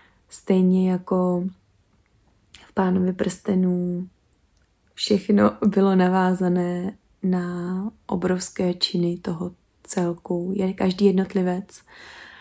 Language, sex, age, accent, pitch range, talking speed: Czech, female, 20-39, native, 185-205 Hz, 75 wpm